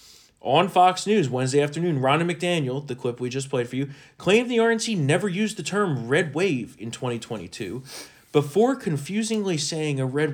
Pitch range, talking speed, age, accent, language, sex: 135-170 Hz, 175 wpm, 30-49, American, English, male